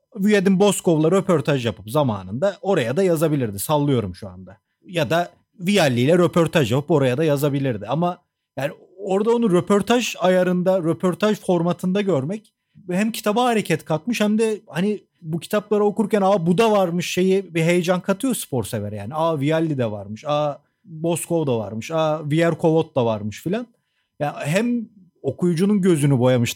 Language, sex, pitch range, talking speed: Turkish, male, 130-185 Hz, 155 wpm